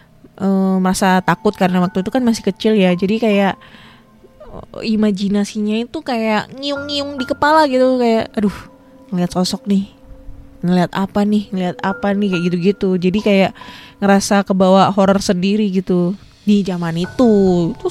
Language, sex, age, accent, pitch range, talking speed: Indonesian, female, 20-39, native, 175-215 Hz, 145 wpm